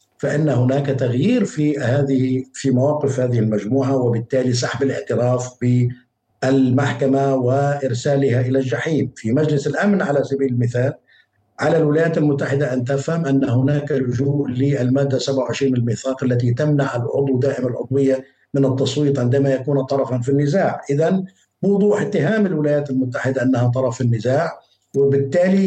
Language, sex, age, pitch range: Arabic, male, 50-69, 130-160 Hz